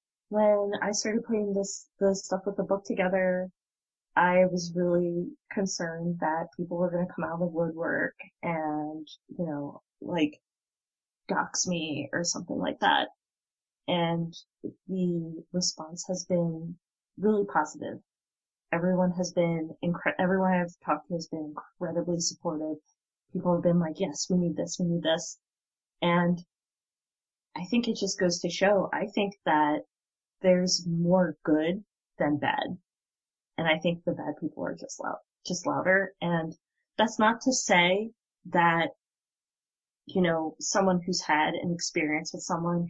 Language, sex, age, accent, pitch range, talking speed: English, female, 20-39, American, 165-185 Hz, 150 wpm